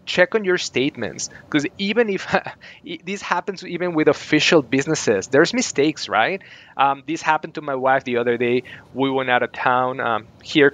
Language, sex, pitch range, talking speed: English, male, 120-150 Hz, 180 wpm